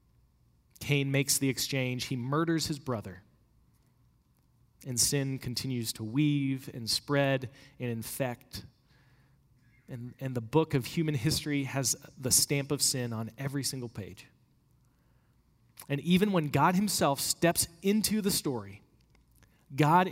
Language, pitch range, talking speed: English, 120-150 Hz, 130 wpm